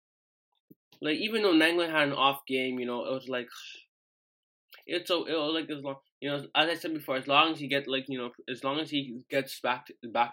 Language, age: English, 10-29